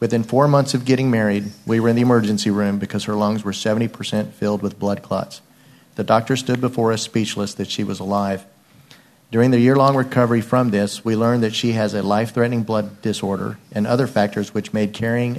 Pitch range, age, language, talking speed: 105-120 Hz, 40-59, English, 205 wpm